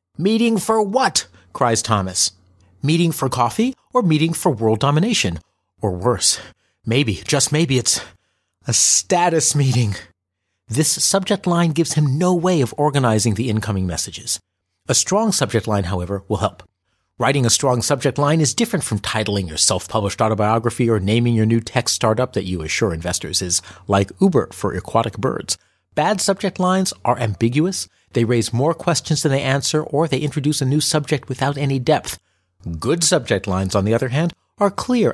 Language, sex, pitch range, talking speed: English, male, 100-150 Hz, 170 wpm